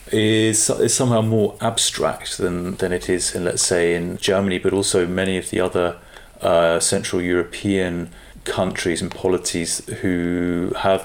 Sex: male